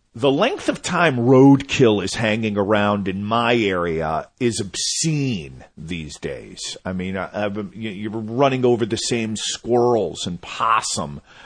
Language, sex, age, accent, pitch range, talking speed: English, male, 50-69, American, 100-140 Hz, 135 wpm